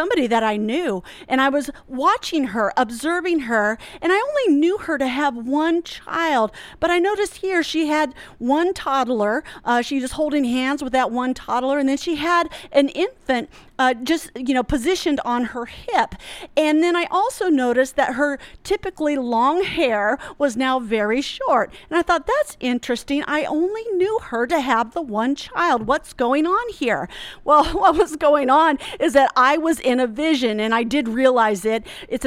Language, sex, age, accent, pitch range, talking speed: English, female, 40-59, American, 245-315 Hz, 190 wpm